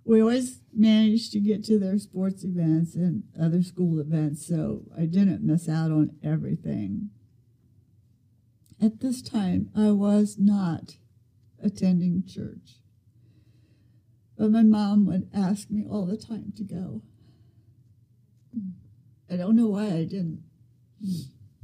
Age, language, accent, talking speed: 60-79, English, American, 125 wpm